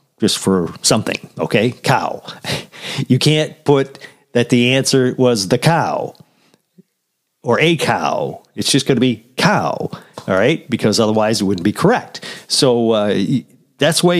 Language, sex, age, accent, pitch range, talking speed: English, male, 50-69, American, 110-170 Hz, 150 wpm